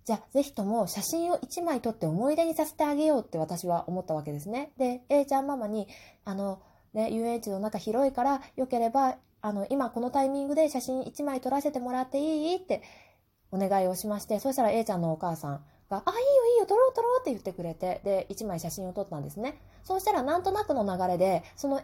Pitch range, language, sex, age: 175-275 Hz, Japanese, female, 20-39